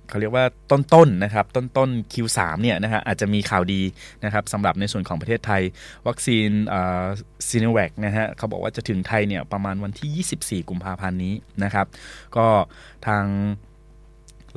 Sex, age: male, 20-39